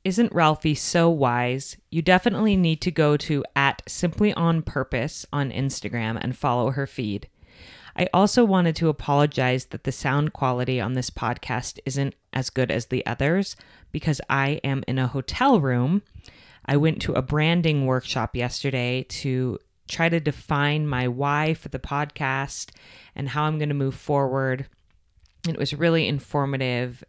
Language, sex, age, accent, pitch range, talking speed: English, female, 30-49, American, 125-165 Hz, 160 wpm